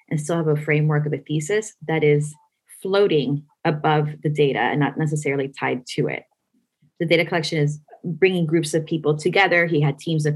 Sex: female